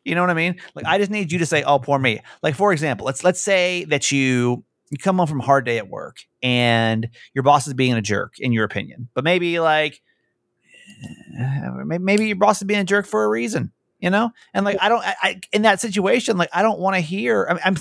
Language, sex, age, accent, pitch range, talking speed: English, male, 30-49, American, 125-185 Hz, 250 wpm